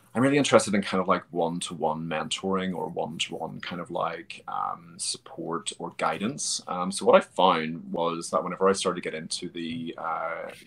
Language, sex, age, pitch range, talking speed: English, male, 30-49, 80-95 Hz, 185 wpm